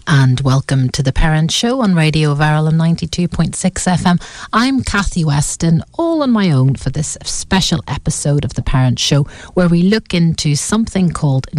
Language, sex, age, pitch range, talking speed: English, female, 40-59, 140-185 Hz, 165 wpm